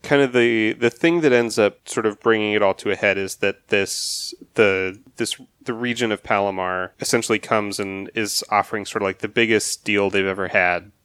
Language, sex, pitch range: English, male, 95-115 Hz